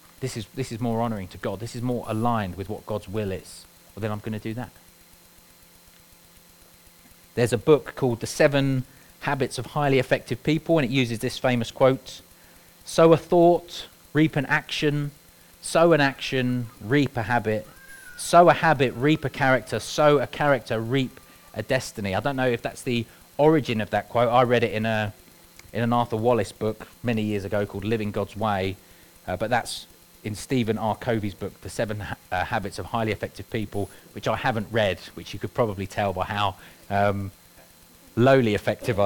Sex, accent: male, British